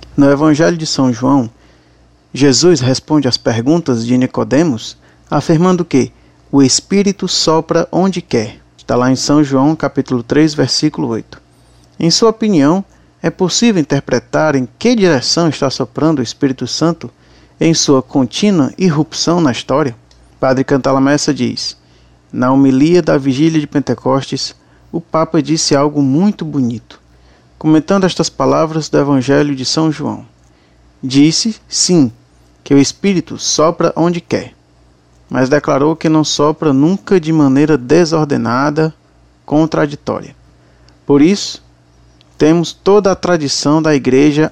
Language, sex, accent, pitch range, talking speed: Portuguese, male, Brazilian, 120-160 Hz, 130 wpm